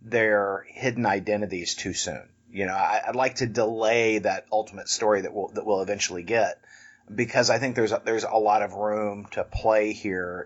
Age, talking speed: 30-49, 195 wpm